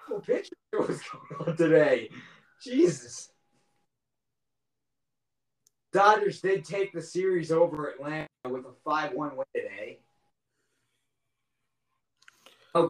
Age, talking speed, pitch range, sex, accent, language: 30-49, 100 wpm, 140-210 Hz, male, American, English